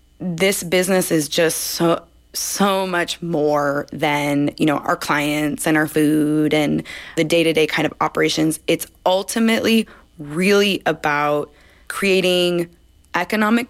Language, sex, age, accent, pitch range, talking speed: English, female, 20-39, American, 155-185 Hz, 125 wpm